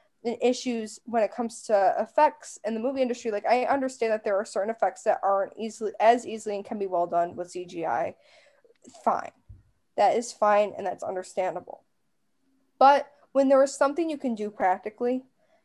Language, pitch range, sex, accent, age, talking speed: English, 215-285 Hz, female, American, 10-29, 175 wpm